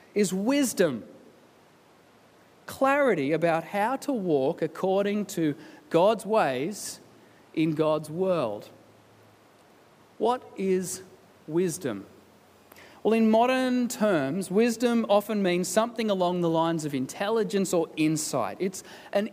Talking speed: 105 wpm